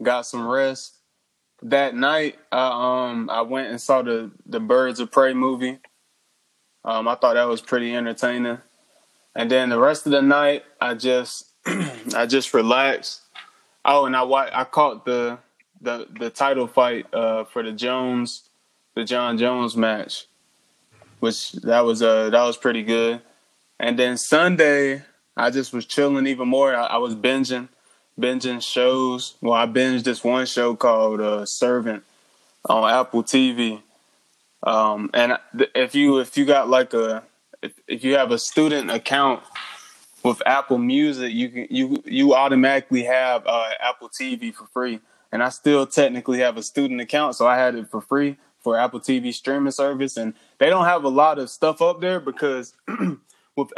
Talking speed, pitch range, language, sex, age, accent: 170 wpm, 120-140 Hz, English, male, 20-39, American